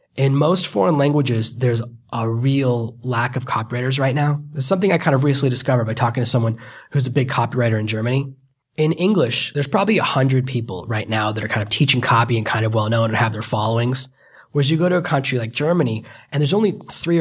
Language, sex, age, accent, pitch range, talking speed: English, male, 20-39, American, 120-145 Hz, 225 wpm